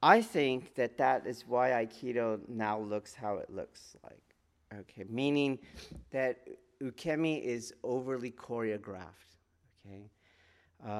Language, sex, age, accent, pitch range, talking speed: English, male, 40-59, American, 100-140 Hz, 120 wpm